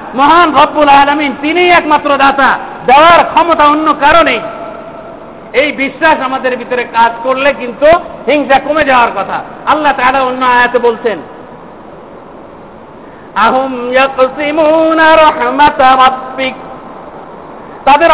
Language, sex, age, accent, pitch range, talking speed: Bengali, male, 50-69, native, 255-310 Hz, 95 wpm